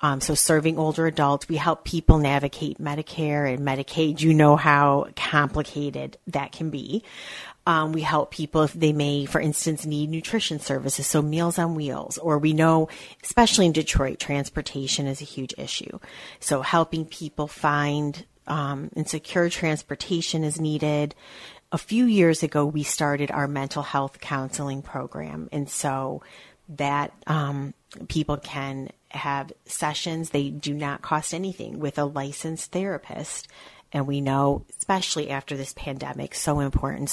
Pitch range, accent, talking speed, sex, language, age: 140-160 Hz, American, 150 wpm, female, English, 30-49